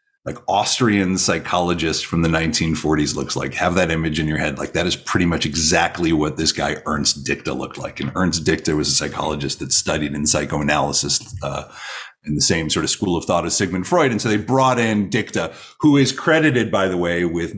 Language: English